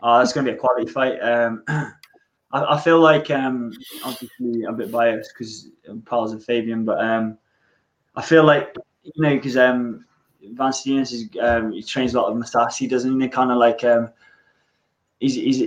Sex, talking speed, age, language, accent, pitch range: male, 190 wpm, 20-39, English, British, 120-135 Hz